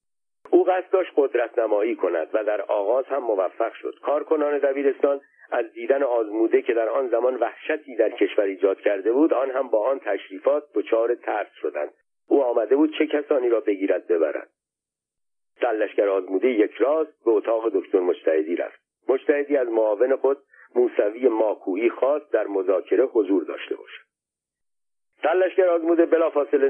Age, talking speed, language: 50-69, 150 wpm, Persian